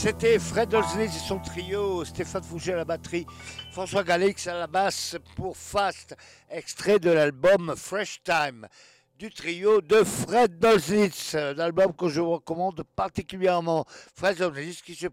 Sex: male